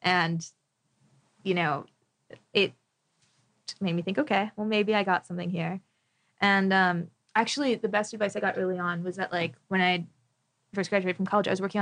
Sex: female